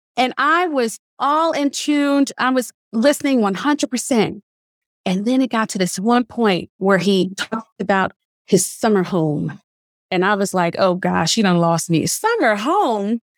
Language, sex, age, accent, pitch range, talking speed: English, female, 30-49, American, 195-265 Hz, 165 wpm